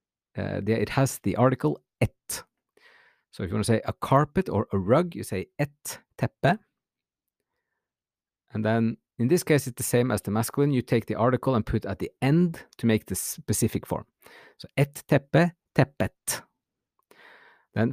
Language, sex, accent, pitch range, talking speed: English, male, Norwegian, 105-145 Hz, 170 wpm